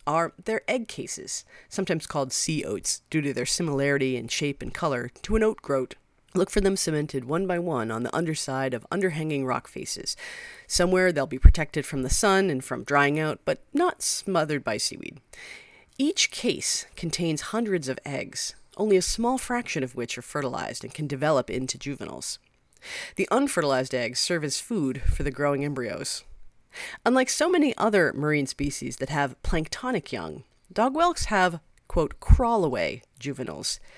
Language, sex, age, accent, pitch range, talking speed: English, female, 40-59, American, 140-200 Hz, 170 wpm